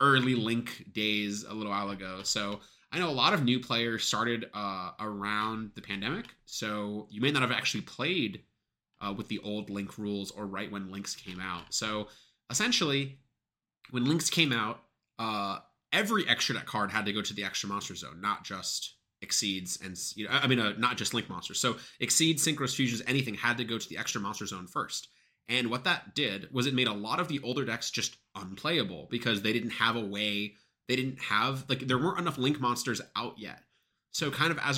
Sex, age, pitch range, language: male, 20-39, 105-125 Hz, English